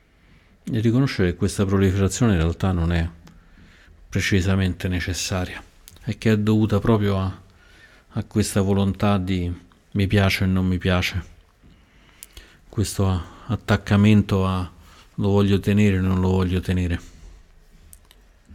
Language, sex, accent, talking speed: Italian, male, native, 125 wpm